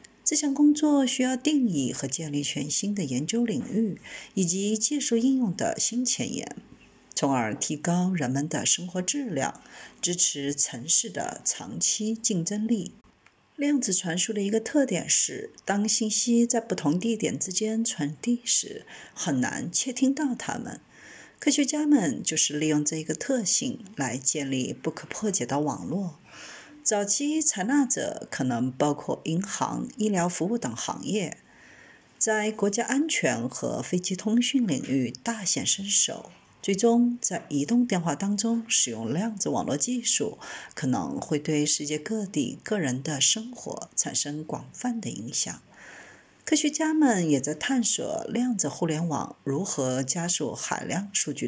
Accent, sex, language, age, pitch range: native, female, Chinese, 50-69, 155-240 Hz